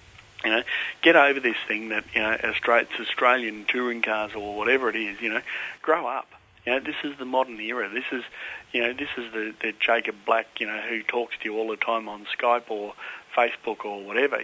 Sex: male